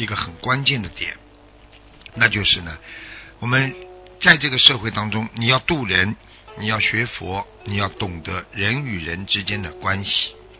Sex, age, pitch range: male, 60-79, 100-130 Hz